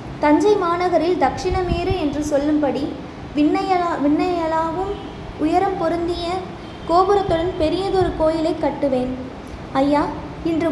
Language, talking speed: Tamil, 85 wpm